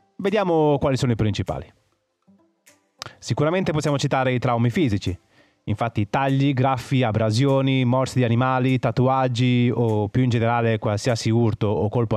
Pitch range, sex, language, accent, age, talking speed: 110-145 Hz, male, Italian, native, 30-49, 135 wpm